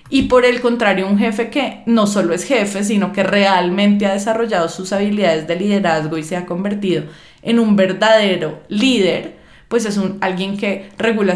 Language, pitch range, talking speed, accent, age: Spanish, 180-215 Hz, 175 wpm, Colombian, 20-39